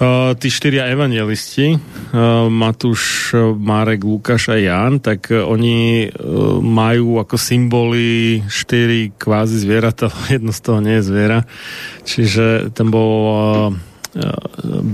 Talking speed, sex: 135 wpm, male